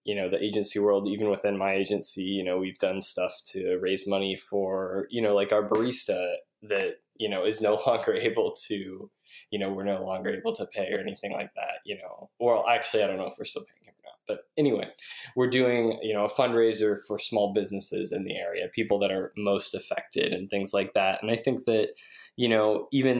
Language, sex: English, male